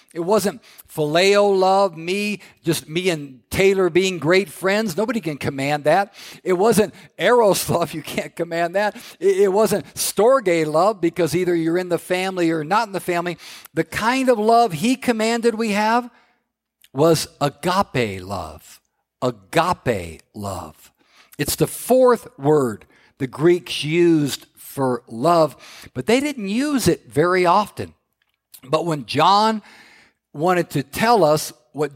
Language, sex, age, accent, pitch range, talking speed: English, male, 50-69, American, 140-195 Hz, 145 wpm